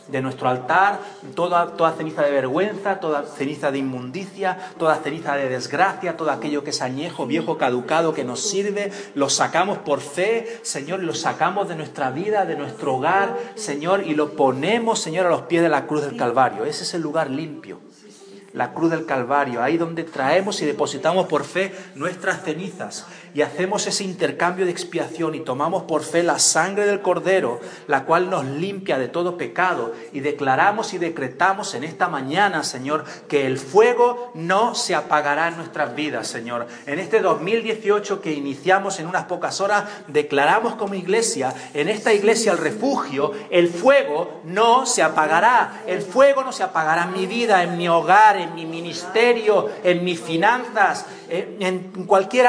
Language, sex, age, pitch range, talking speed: Spanish, male, 40-59, 145-195 Hz, 175 wpm